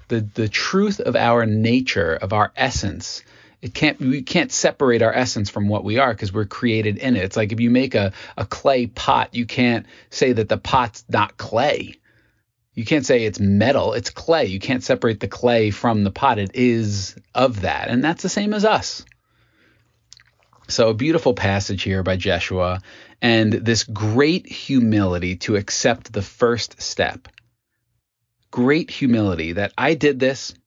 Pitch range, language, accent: 105-130 Hz, English, American